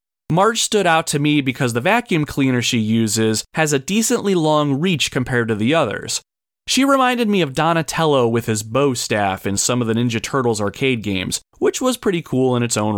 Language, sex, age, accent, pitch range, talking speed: English, male, 30-49, American, 110-160 Hz, 205 wpm